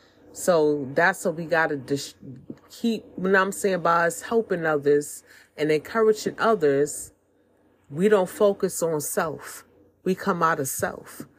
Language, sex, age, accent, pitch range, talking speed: English, female, 30-49, American, 155-195 Hz, 140 wpm